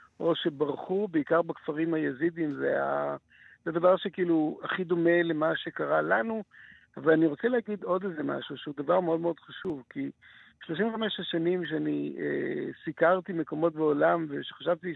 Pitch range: 145-175 Hz